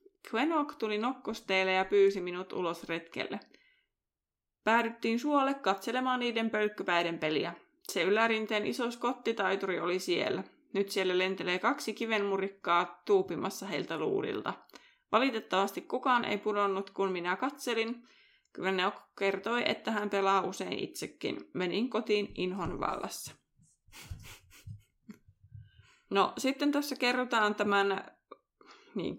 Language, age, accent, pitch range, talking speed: Finnish, 20-39, native, 185-235 Hz, 105 wpm